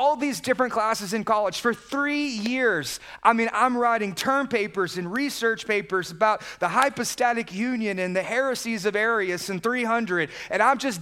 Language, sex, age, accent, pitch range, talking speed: English, male, 30-49, American, 170-240 Hz, 175 wpm